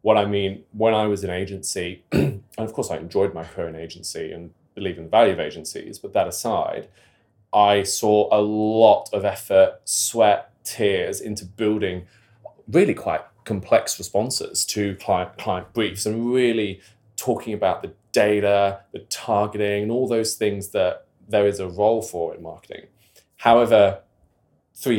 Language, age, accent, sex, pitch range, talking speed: English, 20-39, British, male, 100-110 Hz, 160 wpm